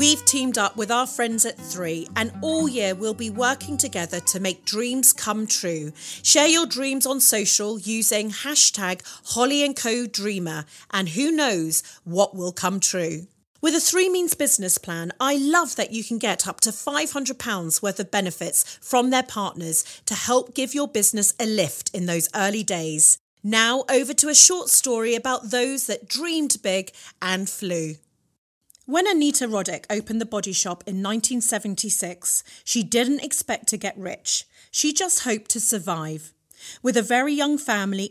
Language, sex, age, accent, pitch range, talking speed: English, female, 40-59, British, 190-265 Hz, 170 wpm